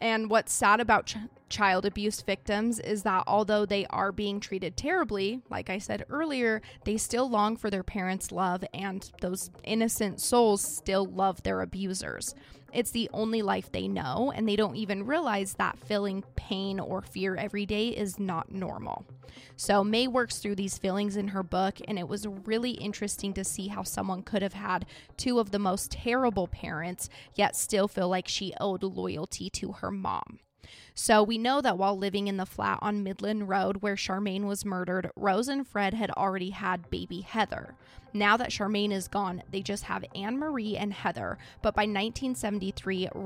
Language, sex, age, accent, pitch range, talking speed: English, female, 20-39, American, 190-215 Hz, 180 wpm